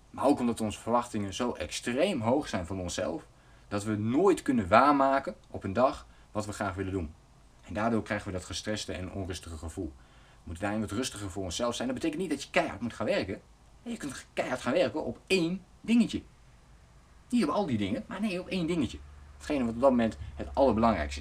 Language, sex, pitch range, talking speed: Dutch, male, 90-120 Hz, 215 wpm